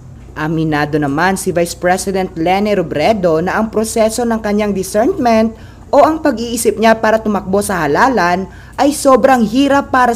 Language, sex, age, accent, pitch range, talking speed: Filipino, female, 20-39, native, 150-215 Hz, 150 wpm